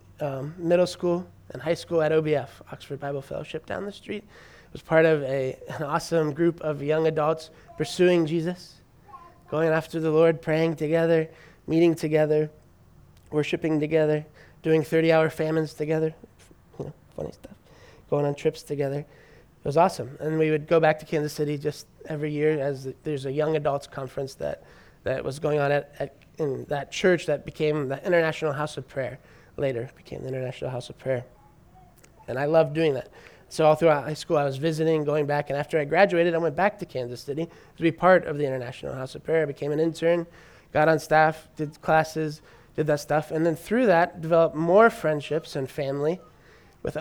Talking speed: 190 wpm